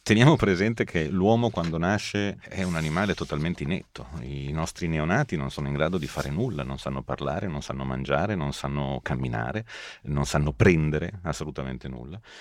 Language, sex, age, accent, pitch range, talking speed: Italian, male, 40-59, native, 70-100 Hz, 170 wpm